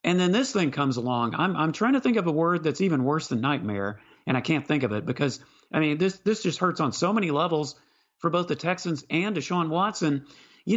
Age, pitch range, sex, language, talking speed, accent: 40-59, 140-195 Hz, male, English, 245 wpm, American